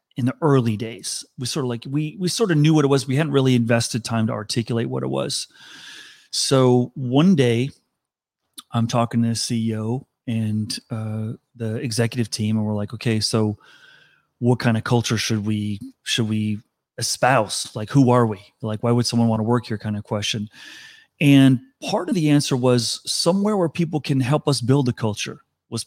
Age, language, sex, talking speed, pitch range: 30-49, English, male, 195 wpm, 115-145 Hz